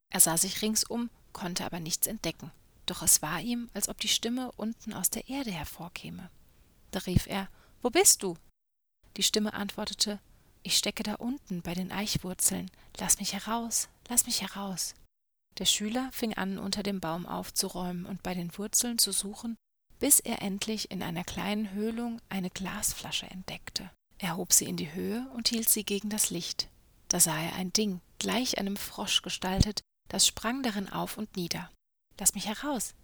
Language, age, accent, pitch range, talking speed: German, 30-49, German, 190-225 Hz, 175 wpm